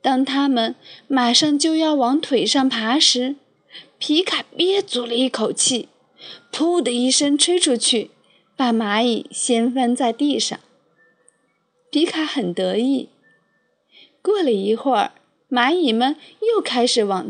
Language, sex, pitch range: Chinese, female, 225-305 Hz